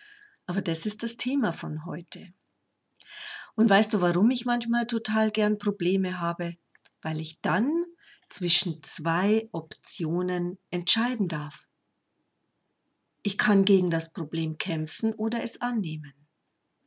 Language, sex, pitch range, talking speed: German, female, 170-225 Hz, 120 wpm